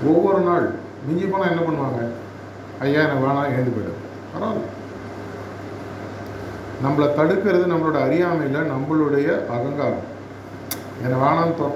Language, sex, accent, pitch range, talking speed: Tamil, male, native, 100-155 Hz, 100 wpm